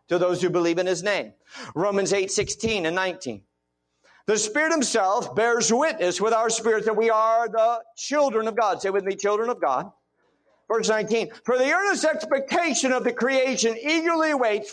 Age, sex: 50-69, male